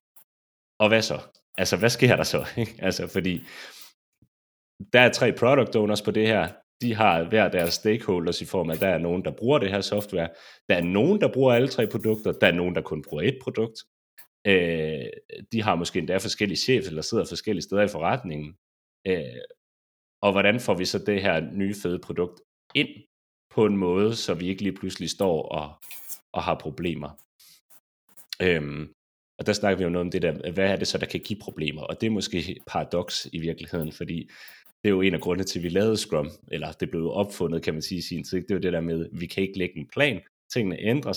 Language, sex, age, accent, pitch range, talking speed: Danish, male, 30-49, native, 85-105 Hz, 220 wpm